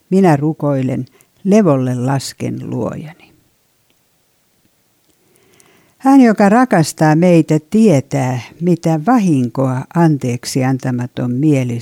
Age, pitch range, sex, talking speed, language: 60-79, 135-185 Hz, female, 75 wpm, Finnish